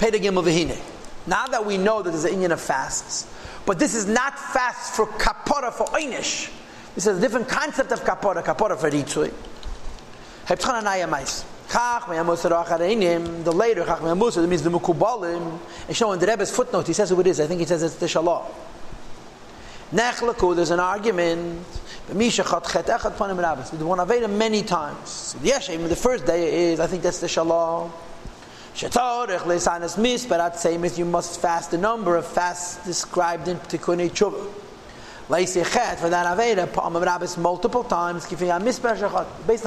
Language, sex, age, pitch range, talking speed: English, male, 40-59, 170-210 Hz, 130 wpm